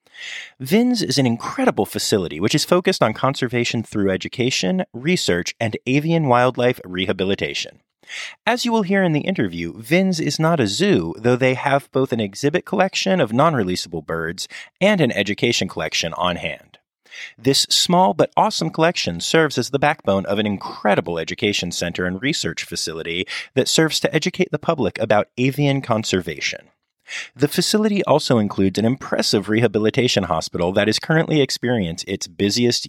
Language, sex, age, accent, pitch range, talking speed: English, male, 30-49, American, 100-160 Hz, 155 wpm